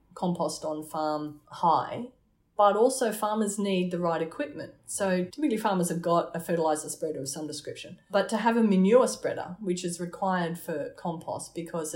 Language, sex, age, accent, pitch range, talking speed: English, female, 30-49, Australian, 155-190 Hz, 170 wpm